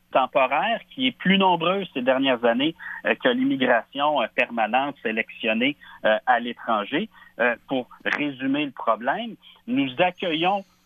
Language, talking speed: French, 110 wpm